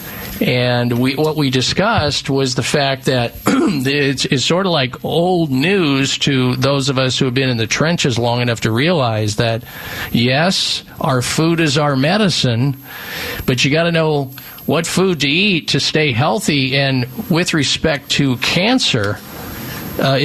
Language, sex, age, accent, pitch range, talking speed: English, male, 50-69, American, 125-165 Hz, 165 wpm